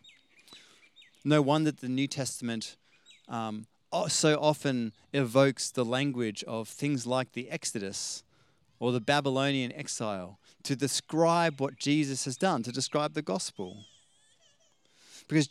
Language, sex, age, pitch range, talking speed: English, male, 30-49, 120-155 Hz, 120 wpm